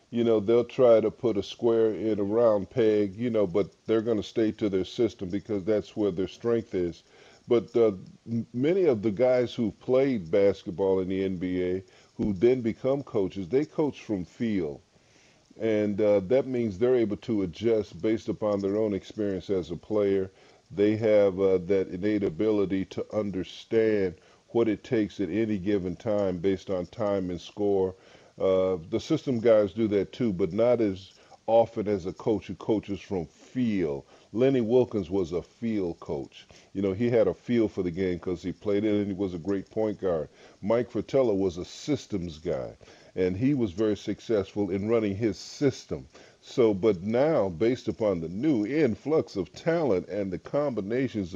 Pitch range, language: 95-115 Hz, English